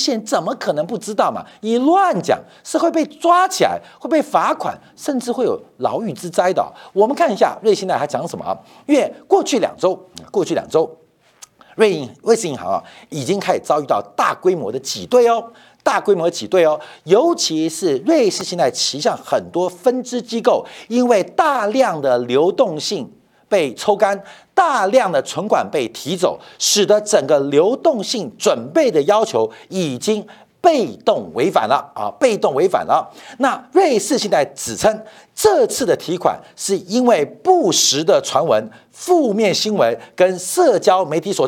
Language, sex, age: Chinese, male, 50-69